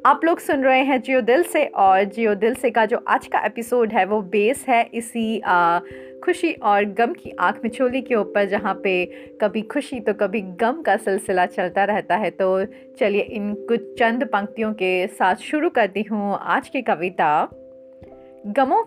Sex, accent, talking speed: female, native, 185 wpm